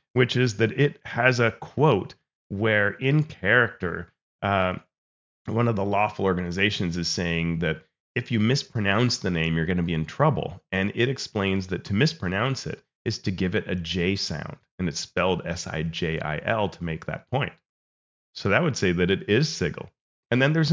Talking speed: 180 wpm